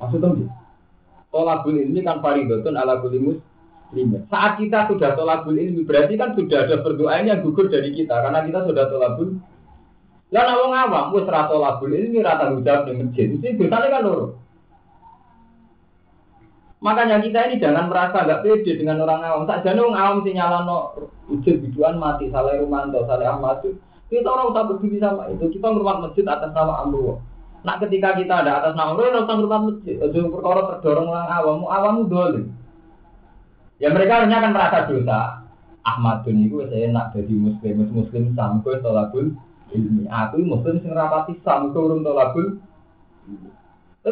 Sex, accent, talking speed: male, native, 155 wpm